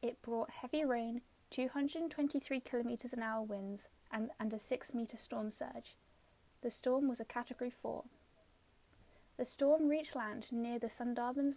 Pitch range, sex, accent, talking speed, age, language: 230-270 Hz, female, British, 145 wpm, 10-29, English